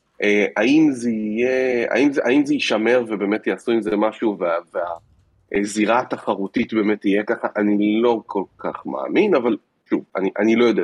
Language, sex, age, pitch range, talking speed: Hebrew, male, 30-49, 100-130 Hz, 160 wpm